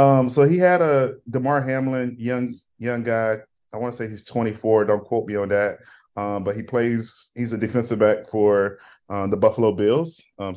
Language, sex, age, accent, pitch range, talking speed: English, male, 20-39, American, 100-115 Hz, 200 wpm